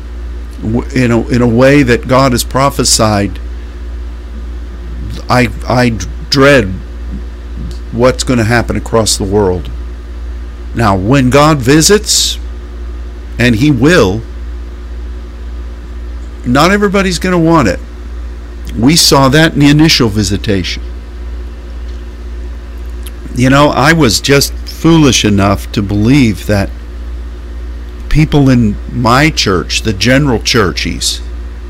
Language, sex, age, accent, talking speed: English, male, 50-69, American, 105 wpm